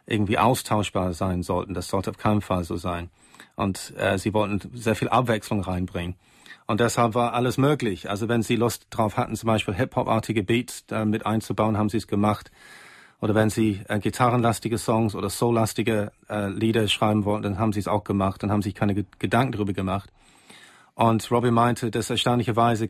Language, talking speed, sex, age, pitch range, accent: German, 190 wpm, male, 40-59, 105-115 Hz, German